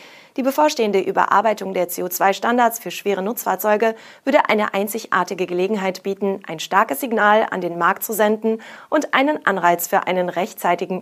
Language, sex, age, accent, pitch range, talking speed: German, female, 30-49, German, 185-230 Hz, 145 wpm